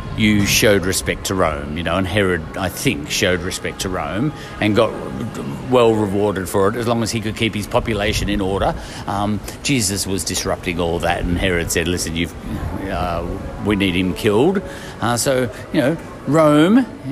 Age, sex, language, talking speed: 50-69, male, English, 180 wpm